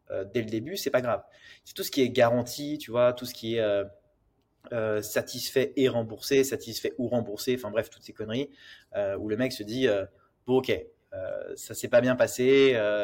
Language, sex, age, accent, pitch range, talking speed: French, male, 20-39, French, 110-135 Hz, 225 wpm